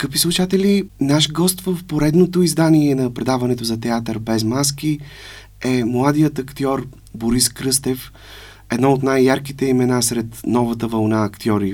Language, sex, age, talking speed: Bulgarian, male, 30-49, 135 wpm